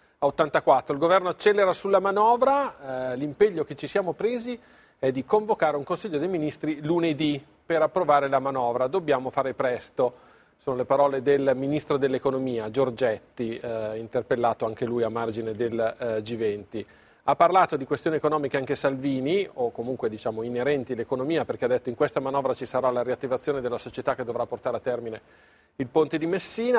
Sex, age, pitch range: male, 40-59, 125-155 Hz